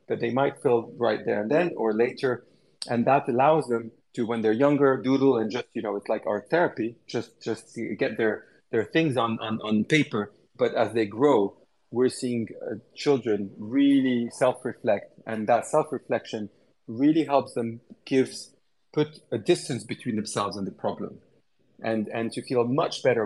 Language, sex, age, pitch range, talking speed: English, male, 40-59, 115-140 Hz, 180 wpm